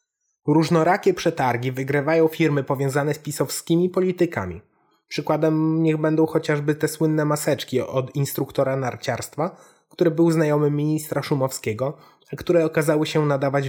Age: 20-39